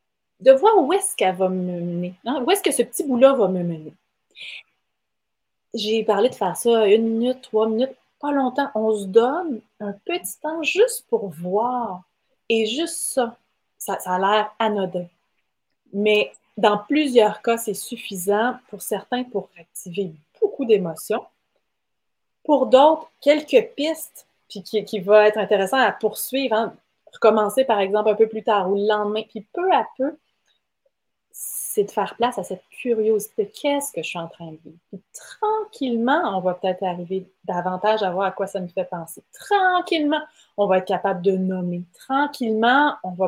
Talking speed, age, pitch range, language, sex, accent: 175 wpm, 30-49, 195-265 Hz, French, female, Canadian